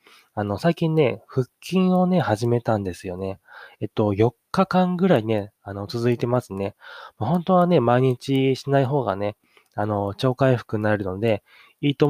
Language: Japanese